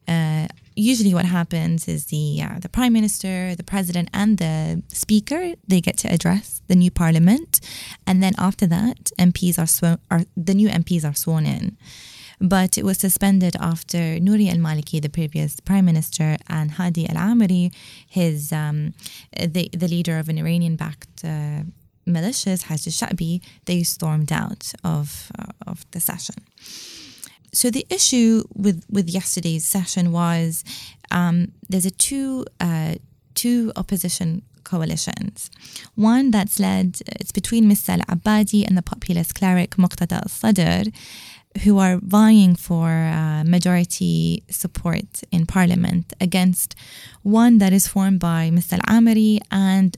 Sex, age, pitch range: female, 20-39, 165-200 Hz